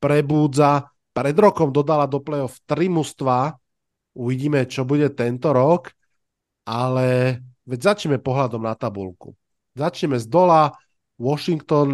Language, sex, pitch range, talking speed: Slovak, male, 125-150 Hz, 110 wpm